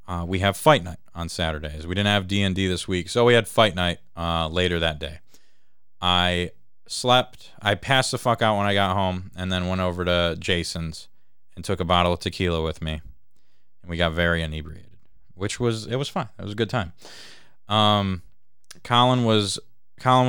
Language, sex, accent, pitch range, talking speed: English, male, American, 90-115 Hz, 200 wpm